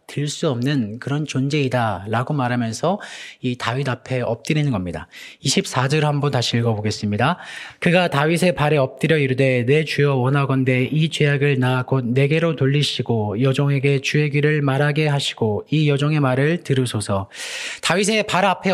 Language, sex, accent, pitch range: Korean, male, native, 130-170 Hz